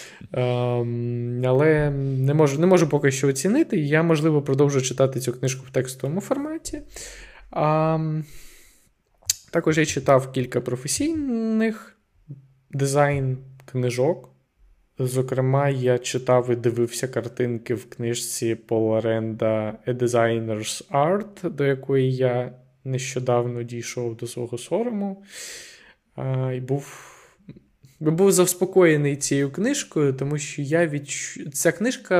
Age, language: 20-39, Ukrainian